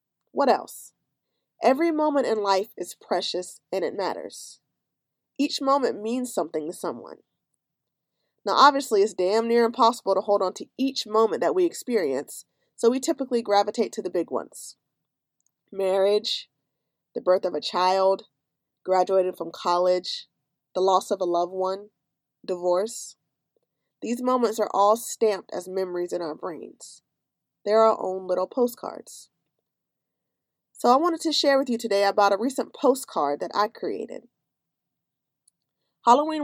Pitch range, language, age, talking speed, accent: 180-240 Hz, English, 20-39, 145 wpm, American